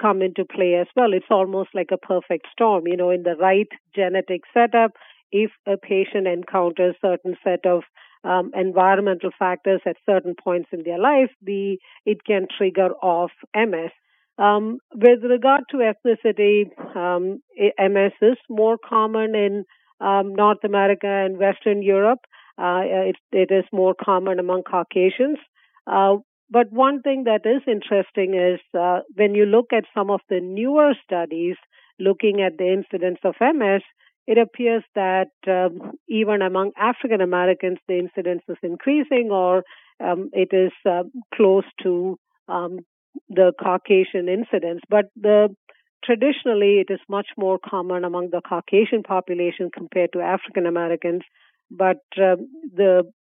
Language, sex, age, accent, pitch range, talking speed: English, female, 50-69, Indian, 180-215 Hz, 150 wpm